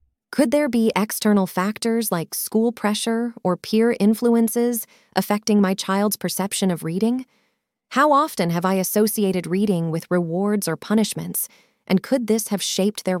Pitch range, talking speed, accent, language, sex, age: 185-225 Hz, 150 wpm, American, English, female, 20-39